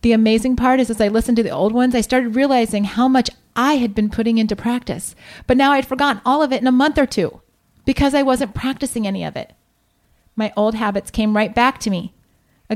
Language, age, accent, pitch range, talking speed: English, 30-49, American, 210-255 Hz, 235 wpm